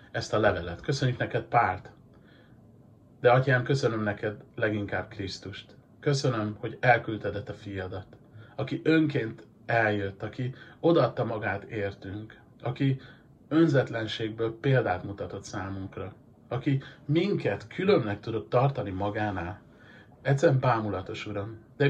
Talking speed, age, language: 105 wpm, 40-59, Hungarian